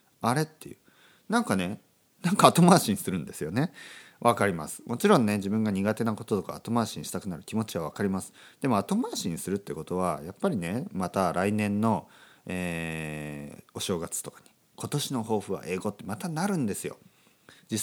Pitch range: 90-135 Hz